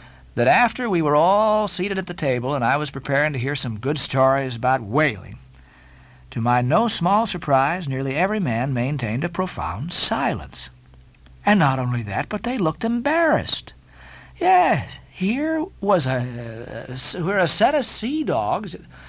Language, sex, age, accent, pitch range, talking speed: English, male, 50-69, American, 125-195 Hz, 160 wpm